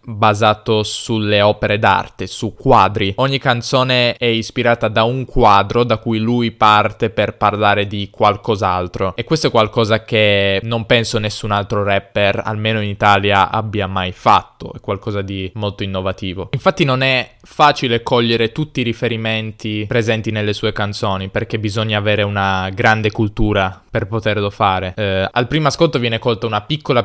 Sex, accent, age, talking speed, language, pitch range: male, native, 20-39, 155 wpm, Italian, 105-115 Hz